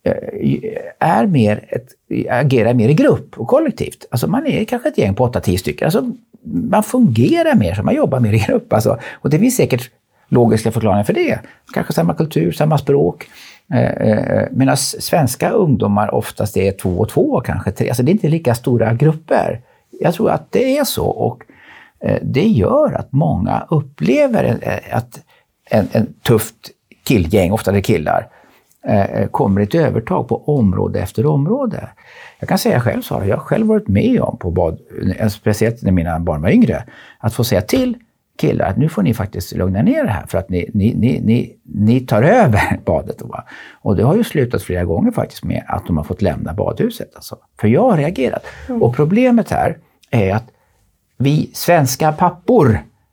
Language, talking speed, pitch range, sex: Swedish, 175 wpm, 105-170 Hz, male